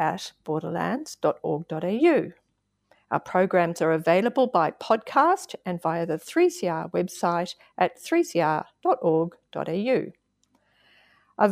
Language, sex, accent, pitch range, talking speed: English, female, Australian, 170-245 Hz, 85 wpm